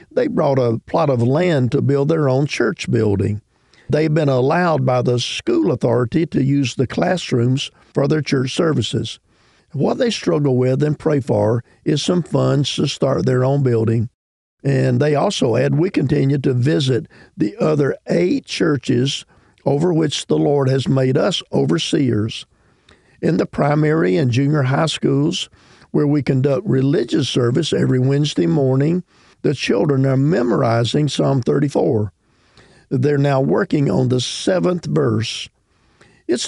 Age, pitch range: 50-69, 125-150 Hz